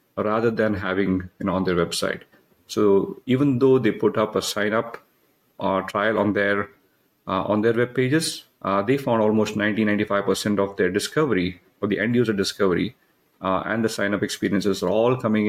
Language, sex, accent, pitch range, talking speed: English, male, Indian, 100-120 Hz, 200 wpm